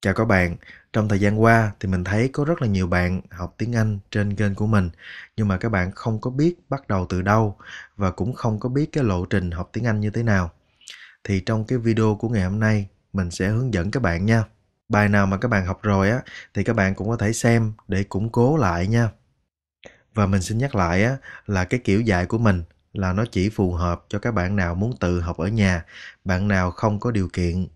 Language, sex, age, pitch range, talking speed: Vietnamese, male, 20-39, 90-115 Hz, 245 wpm